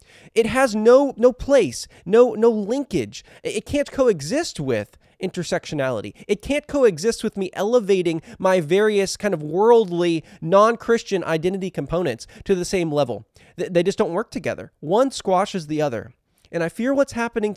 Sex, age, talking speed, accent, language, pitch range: male, 20-39, 155 wpm, American, English, 145-215 Hz